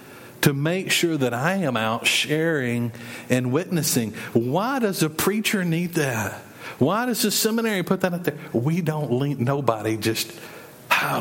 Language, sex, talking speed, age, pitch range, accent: English, male, 160 wpm, 50-69, 125-170 Hz, American